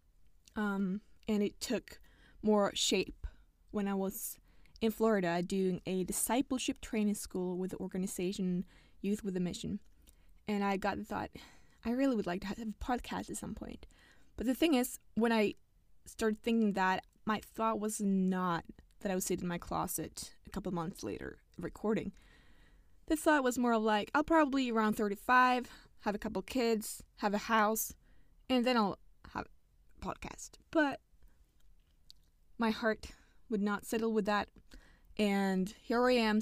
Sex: female